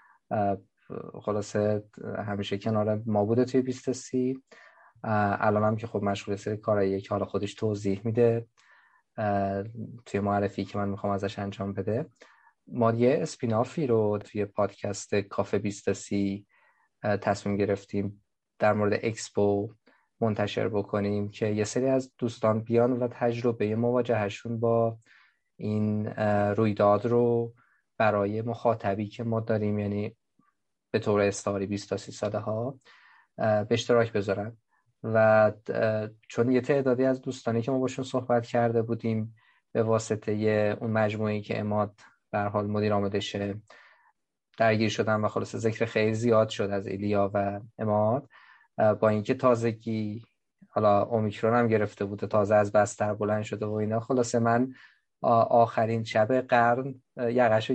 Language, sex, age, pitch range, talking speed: Persian, male, 20-39, 105-115 Hz, 130 wpm